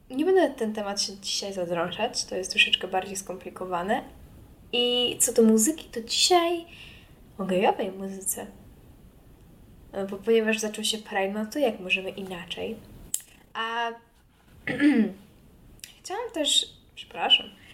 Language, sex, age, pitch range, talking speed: Polish, female, 10-29, 195-230 Hz, 120 wpm